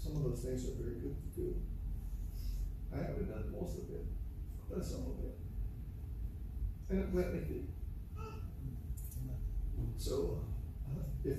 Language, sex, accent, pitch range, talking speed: English, male, American, 80-110 Hz, 130 wpm